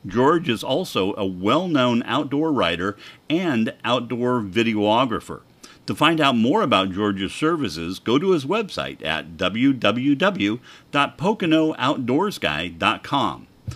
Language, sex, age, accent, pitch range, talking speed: English, male, 50-69, American, 110-155 Hz, 100 wpm